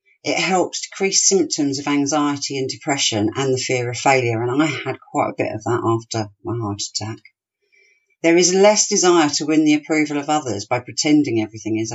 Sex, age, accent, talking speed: female, 40-59, British, 195 wpm